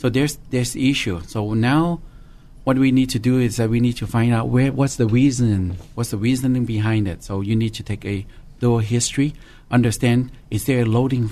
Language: English